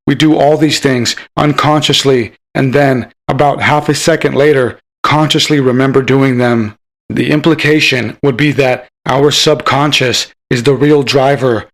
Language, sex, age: English, male, 30-49